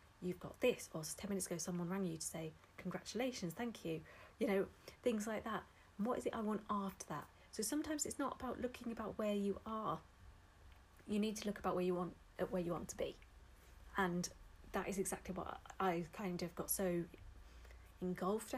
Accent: British